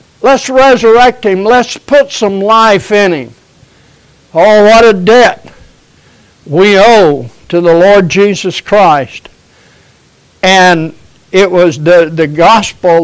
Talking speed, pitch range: 120 wpm, 170-215 Hz